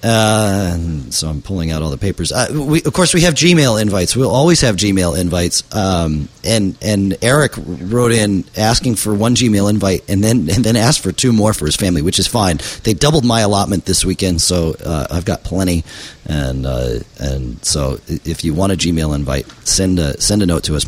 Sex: male